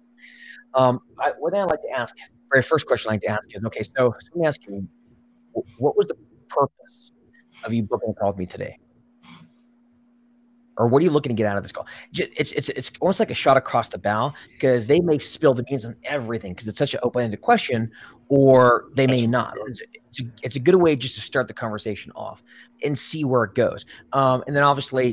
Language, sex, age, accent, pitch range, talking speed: English, male, 30-49, American, 115-145 Hz, 225 wpm